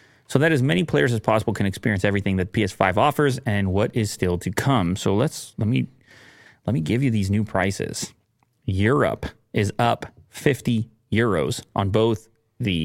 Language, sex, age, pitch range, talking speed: English, male, 30-49, 100-125 Hz, 180 wpm